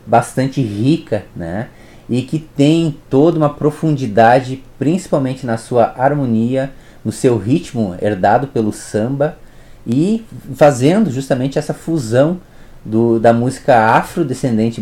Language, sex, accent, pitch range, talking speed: Portuguese, male, Brazilian, 110-135 Hz, 110 wpm